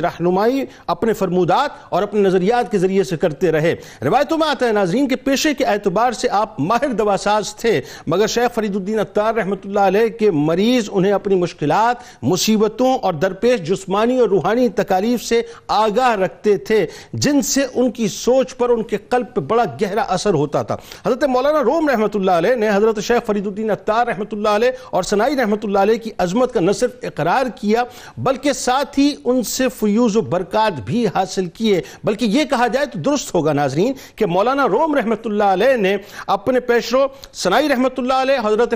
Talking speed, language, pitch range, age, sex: 185 wpm, Urdu, 195-245 Hz, 50-69, male